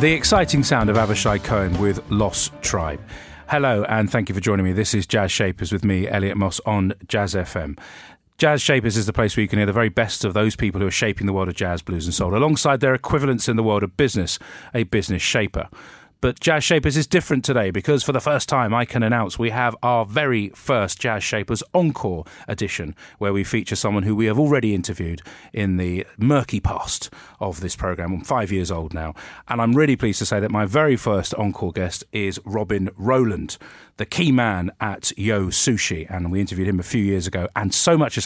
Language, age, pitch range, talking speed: English, 40-59, 95-125 Hz, 220 wpm